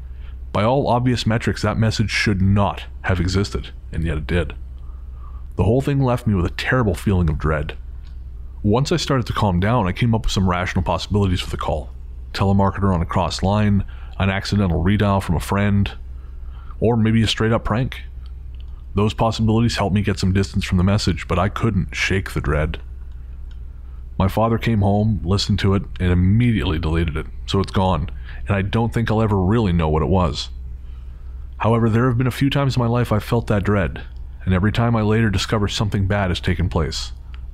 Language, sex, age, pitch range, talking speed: English, male, 30-49, 65-105 Hz, 200 wpm